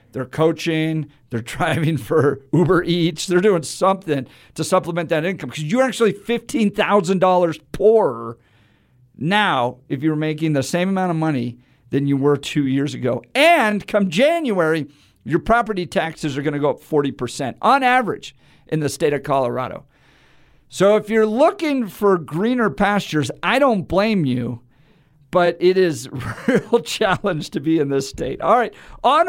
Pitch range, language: 135-185 Hz, English